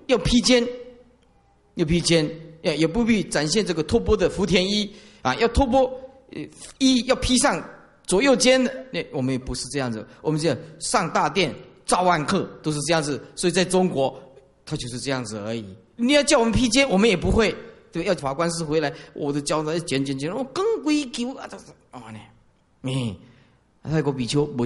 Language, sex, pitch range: Chinese, male, 155-245 Hz